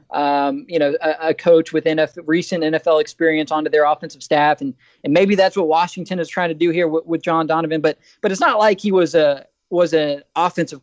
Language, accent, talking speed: English, American, 220 wpm